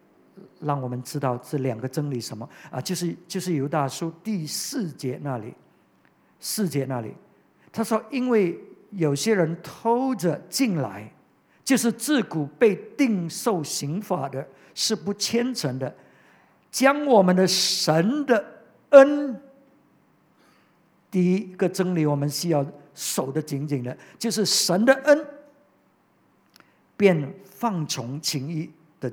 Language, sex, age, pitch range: English, male, 50-69, 155-230 Hz